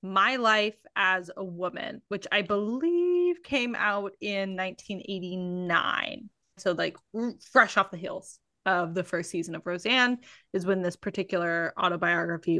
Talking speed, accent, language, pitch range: 140 wpm, American, English, 180-225 Hz